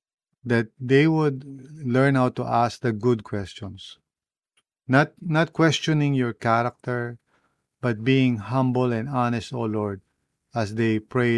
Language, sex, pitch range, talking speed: English, male, 105-130 Hz, 130 wpm